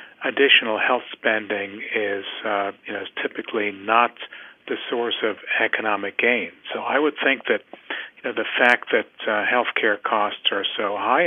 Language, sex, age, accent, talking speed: English, male, 50-69, American, 140 wpm